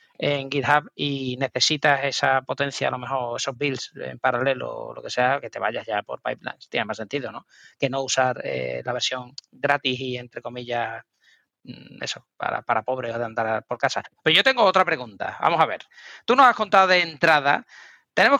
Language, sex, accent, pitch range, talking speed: Spanish, male, Spanish, 135-170 Hz, 195 wpm